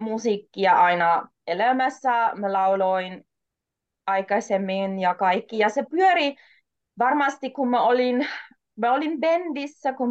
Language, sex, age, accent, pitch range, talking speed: Finnish, female, 20-39, native, 200-250 Hz, 105 wpm